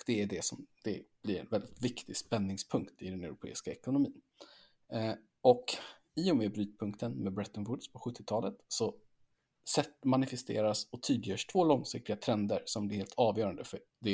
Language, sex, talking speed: Swedish, male, 155 wpm